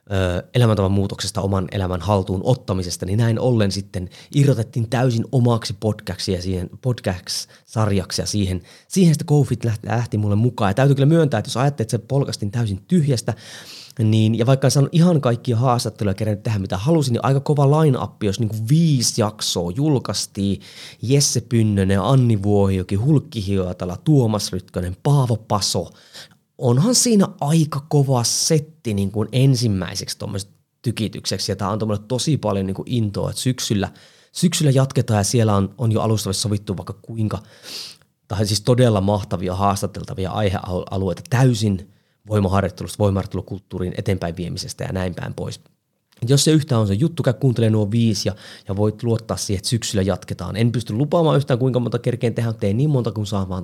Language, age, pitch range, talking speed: Finnish, 20-39, 100-130 Hz, 160 wpm